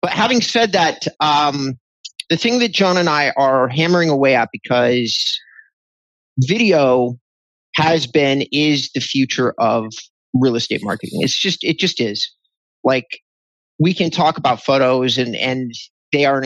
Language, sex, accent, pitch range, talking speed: English, male, American, 120-150 Hz, 155 wpm